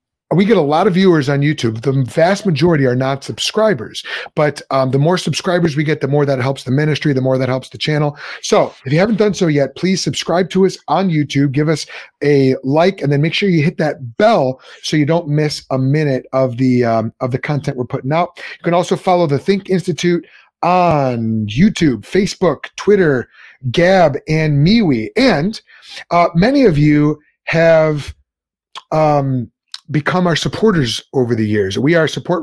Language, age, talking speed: English, 30-49, 190 wpm